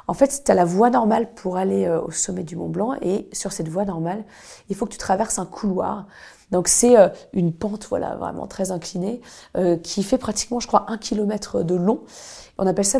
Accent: French